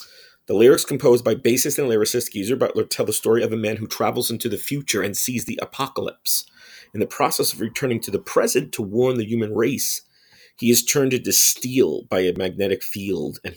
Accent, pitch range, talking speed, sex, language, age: American, 100-135 Hz, 210 wpm, male, English, 40-59